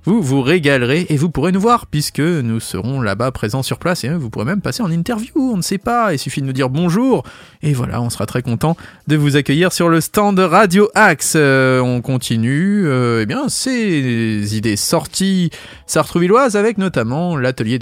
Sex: male